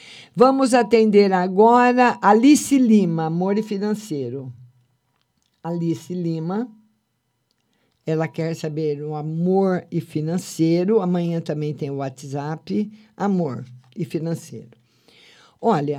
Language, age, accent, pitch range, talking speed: Portuguese, 50-69, Brazilian, 155-225 Hz, 100 wpm